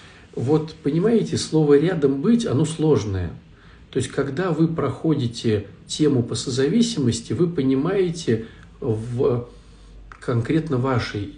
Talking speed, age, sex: 105 wpm, 50-69, male